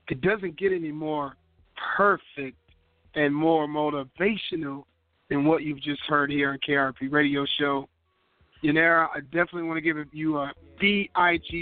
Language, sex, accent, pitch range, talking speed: English, male, American, 140-160 Hz, 145 wpm